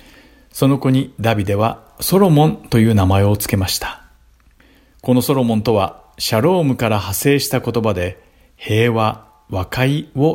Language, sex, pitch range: Japanese, male, 100-130 Hz